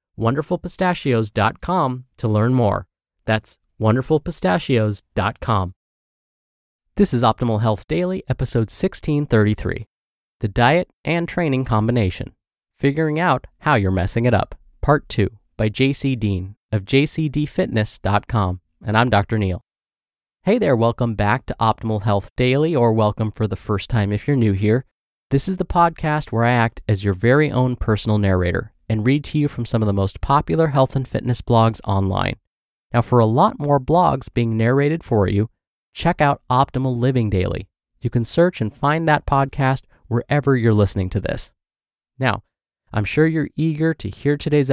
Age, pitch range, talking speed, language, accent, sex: 20-39, 105-140 Hz, 155 wpm, English, American, male